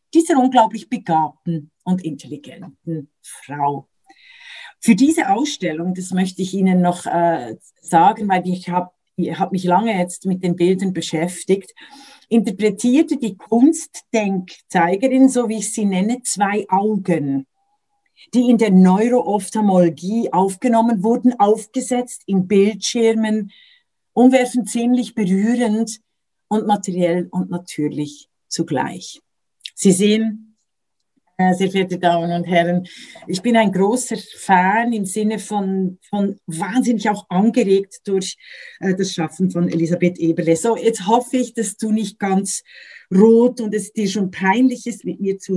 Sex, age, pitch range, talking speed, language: female, 50-69, 185-230 Hz, 130 wpm, German